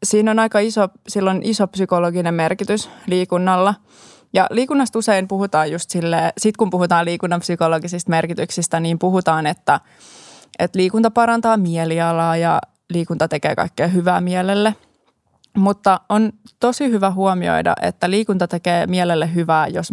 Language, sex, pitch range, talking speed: Finnish, female, 170-195 Hz, 130 wpm